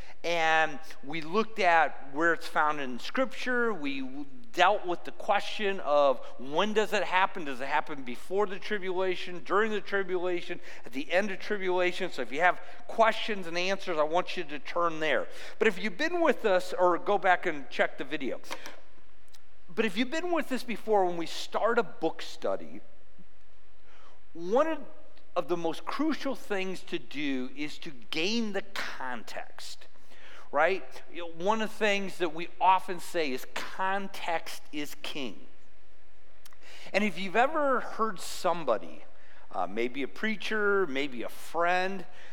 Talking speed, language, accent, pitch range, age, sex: 155 wpm, English, American, 160-220 Hz, 50-69, male